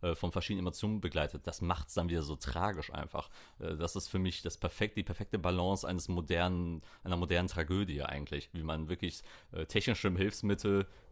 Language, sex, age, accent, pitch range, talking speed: German, male, 30-49, German, 80-95 Hz, 175 wpm